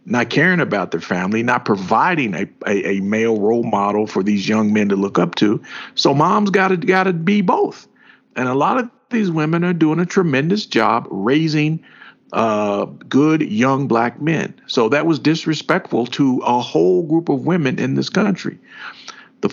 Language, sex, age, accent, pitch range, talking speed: English, male, 50-69, American, 120-165 Hz, 185 wpm